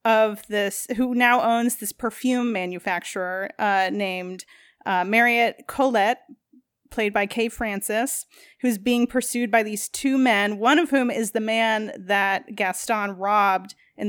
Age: 30-49